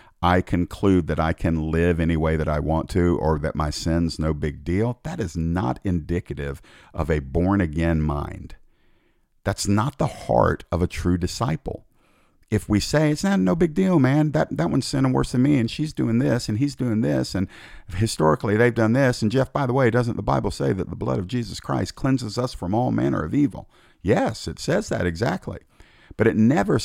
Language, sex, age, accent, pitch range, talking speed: English, male, 50-69, American, 80-115 Hz, 210 wpm